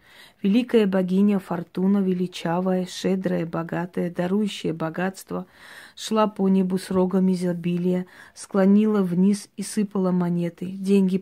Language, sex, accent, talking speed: Russian, female, native, 105 wpm